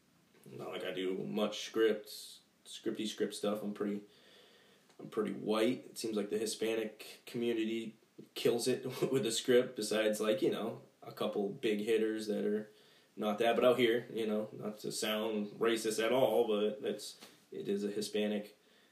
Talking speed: 170 wpm